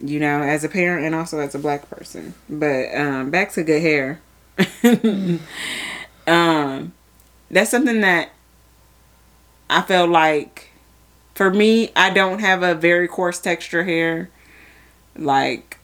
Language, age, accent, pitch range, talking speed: English, 20-39, American, 145-185 Hz, 135 wpm